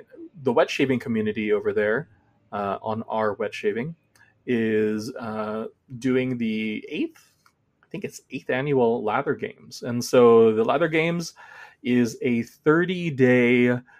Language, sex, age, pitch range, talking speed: English, male, 20-39, 110-140 Hz, 135 wpm